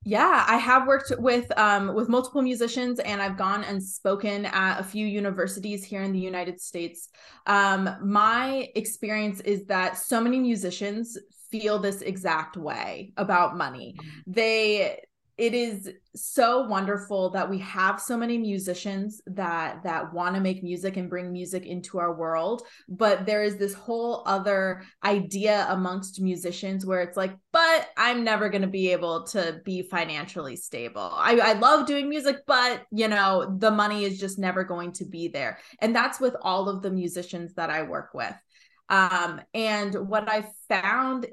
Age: 20-39